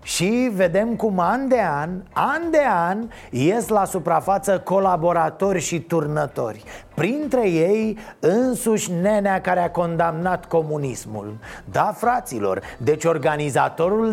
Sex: male